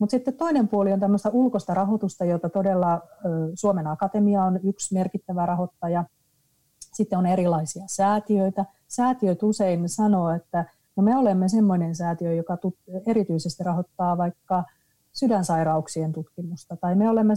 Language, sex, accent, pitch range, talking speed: Finnish, female, native, 170-205 Hz, 130 wpm